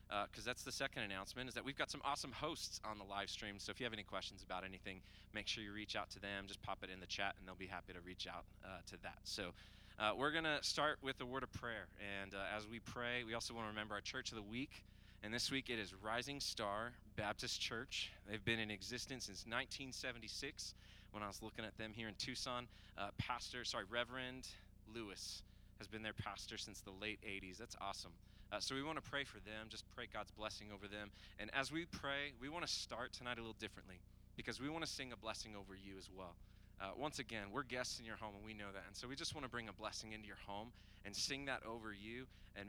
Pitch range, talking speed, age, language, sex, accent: 100-120 Hz, 255 wpm, 20-39, English, male, American